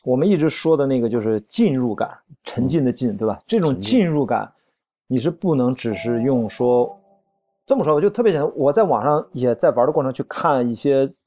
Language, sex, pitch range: Chinese, male, 120-165 Hz